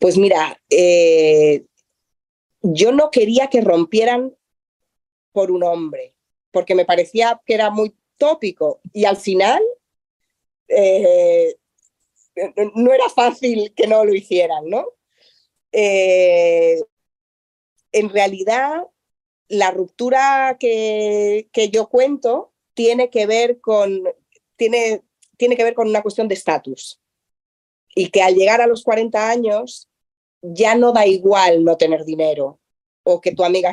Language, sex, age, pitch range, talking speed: Spanish, female, 30-49, 180-235 Hz, 125 wpm